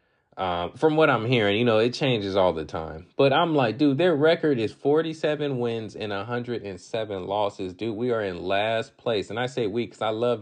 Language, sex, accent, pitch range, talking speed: English, male, American, 100-130 Hz, 215 wpm